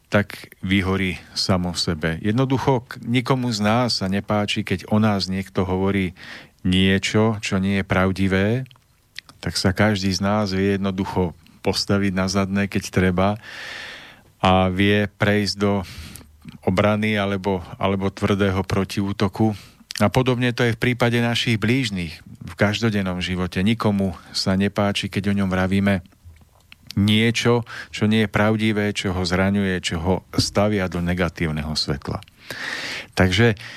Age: 40-59